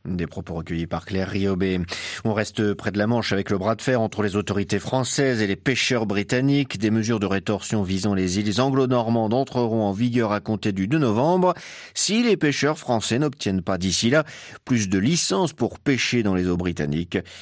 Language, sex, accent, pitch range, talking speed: French, male, French, 100-140 Hz, 200 wpm